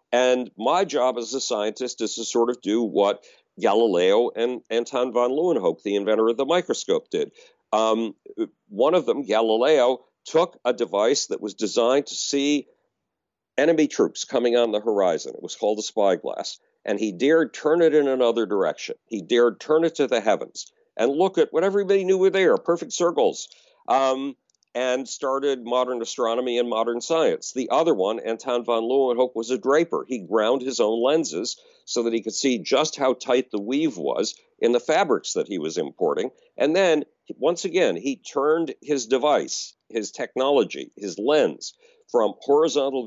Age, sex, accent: 50-69, male, American